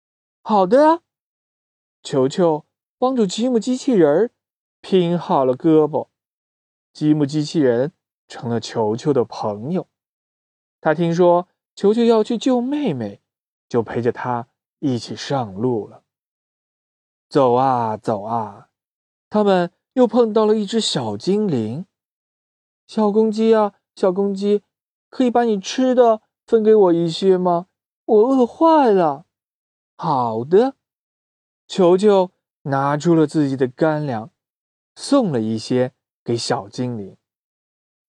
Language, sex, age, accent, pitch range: Chinese, male, 20-39, native, 125-210 Hz